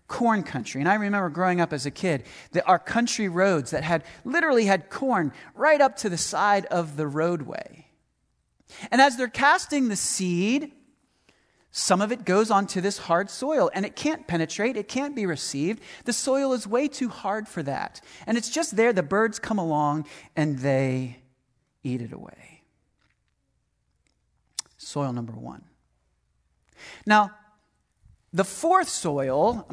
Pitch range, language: 170-260 Hz, English